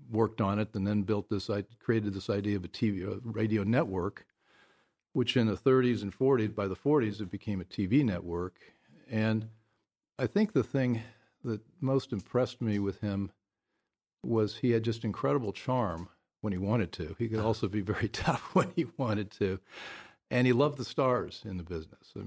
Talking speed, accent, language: 190 wpm, American, English